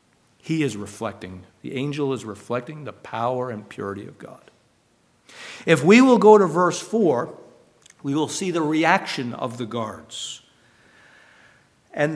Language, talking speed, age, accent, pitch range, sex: English, 145 wpm, 50-69, American, 120-165 Hz, male